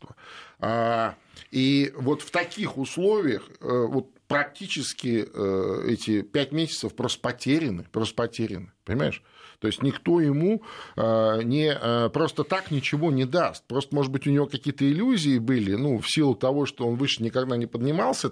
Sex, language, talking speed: male, Russian, 140 wpm